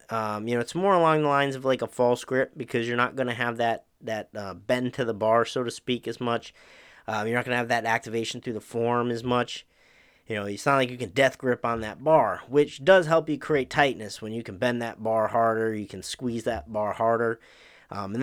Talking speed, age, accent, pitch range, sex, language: 255 wpm, 30-49, American, 110-135 Hz, male, English